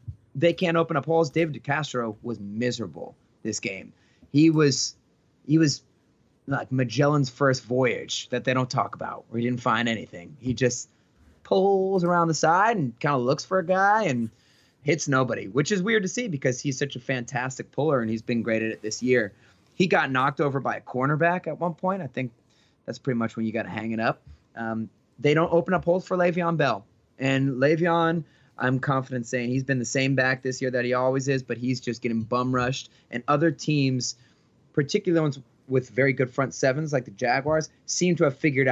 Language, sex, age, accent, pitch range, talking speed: English, male, 30-49, American, 120-145 Hz, 210 wpm